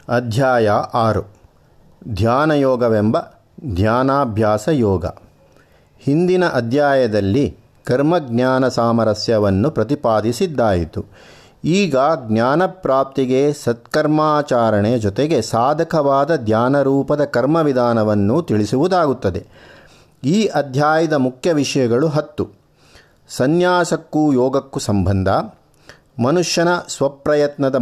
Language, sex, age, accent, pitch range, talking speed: Kannada, male, 50-69, native, 115-155 Hz, 70 wpm